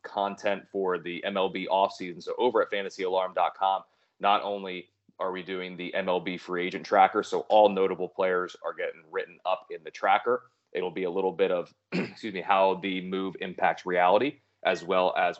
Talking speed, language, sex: 180 wpm, English, male